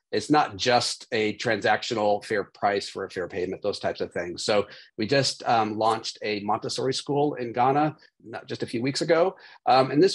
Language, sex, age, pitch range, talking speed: English, male, 40-59, 105-130 Hz, 195 wpm